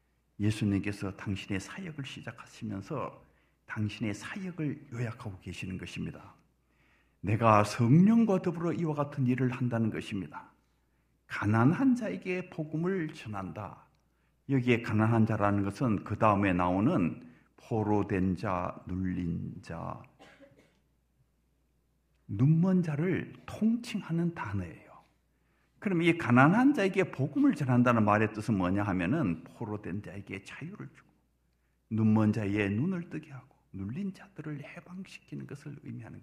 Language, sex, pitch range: Korean, male, 95-145 Hz